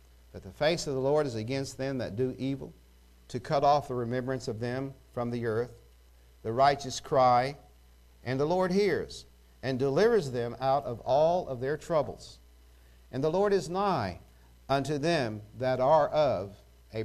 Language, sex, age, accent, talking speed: English, male, 50-69, American, 175 wpm